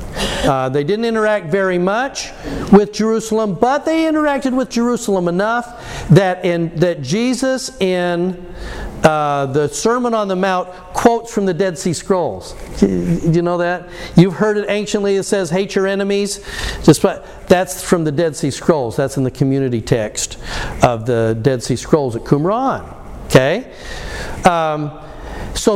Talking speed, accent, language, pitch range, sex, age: 155 wpm, American, English, 175-220 Hz, male, 50-69